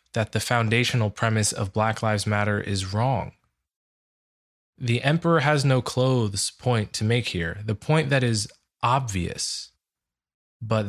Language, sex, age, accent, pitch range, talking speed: English, male, 20-39, American, 95-125 Hz, 140 wpm